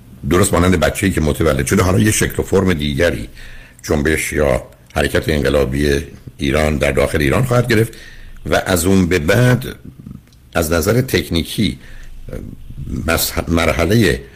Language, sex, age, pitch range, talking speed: Persian, male, 60-79, 80-105 Hz, 130 wpm